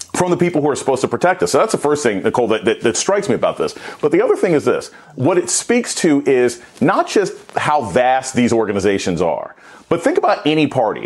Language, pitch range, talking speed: English, 140-220 Hz, 245 wpm